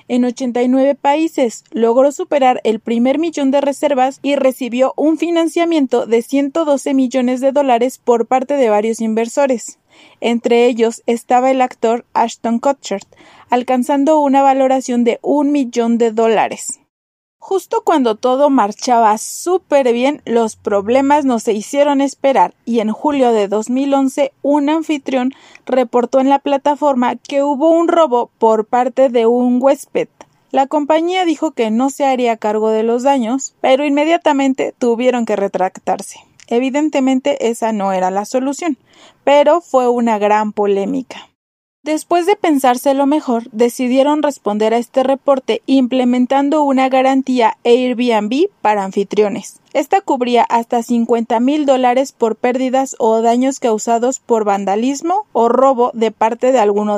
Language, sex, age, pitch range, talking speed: Spanish, female, 30-49, 230-280 Hz, 140 wpm